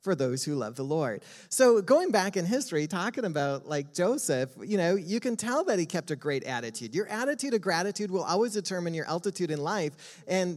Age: 30-49